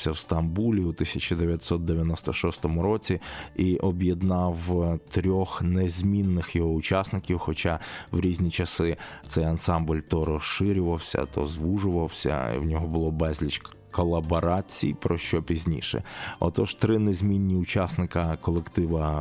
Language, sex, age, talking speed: Ukrainian, male, 20-39, 110 wpm